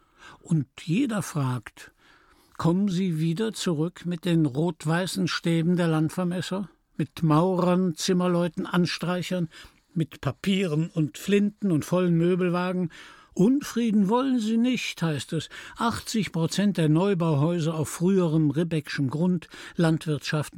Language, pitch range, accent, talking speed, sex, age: German, 150-190 Hz, German, 115 wpm, male, 60-79